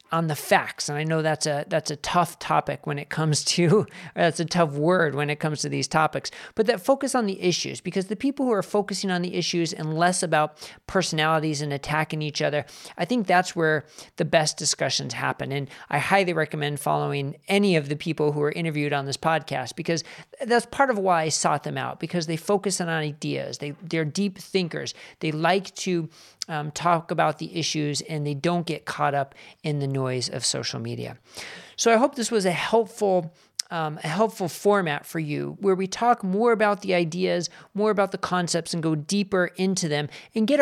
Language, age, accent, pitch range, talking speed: English, 40-59, American, 150-185 Hz, 205 wpm